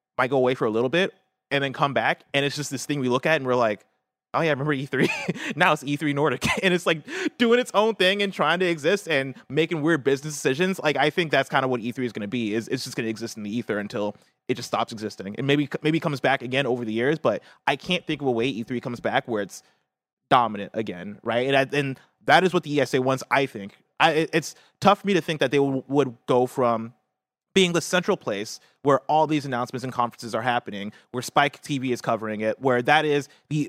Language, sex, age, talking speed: English, male, 30-49, 255 wpm